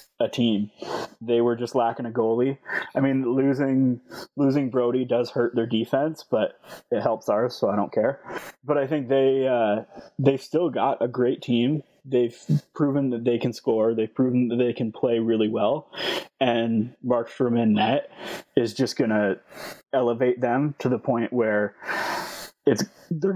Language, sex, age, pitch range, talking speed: English, male, 20-39, 120-145 Hz, 165 wpm